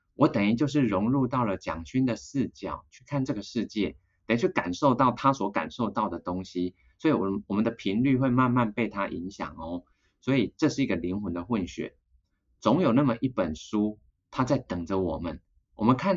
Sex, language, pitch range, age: male, Chinese, 90-120 Hz, 20-39